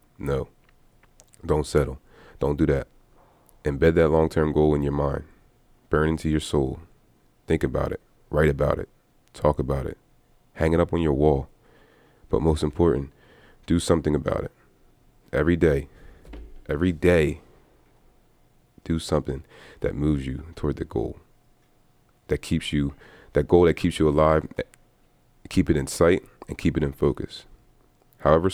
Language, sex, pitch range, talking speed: English, male, 70-85 Hz, 145 wpm